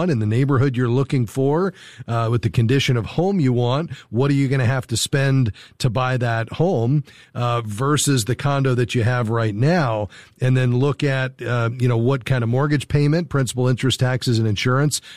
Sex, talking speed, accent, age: male, 205 wpm, American, 40-59